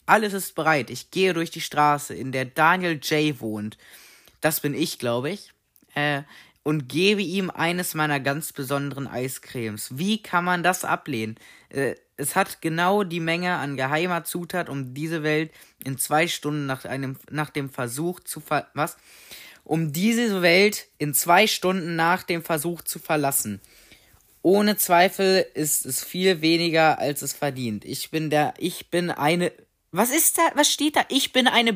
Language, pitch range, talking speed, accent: German, 135-180 Hz, 165 wpm, German